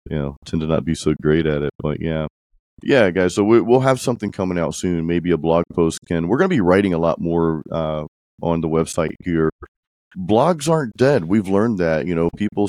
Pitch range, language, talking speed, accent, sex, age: 80-95 Hz, English, 230 wpm, American, male, 40-59